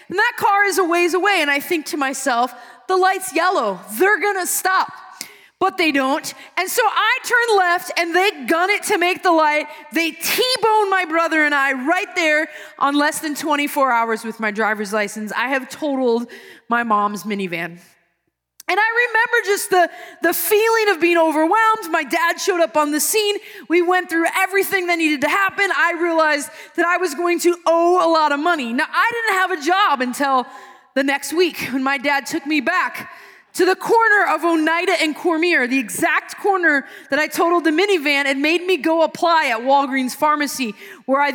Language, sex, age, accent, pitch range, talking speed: English, female, 20-39, American, 280-380 Hz, 195 wpm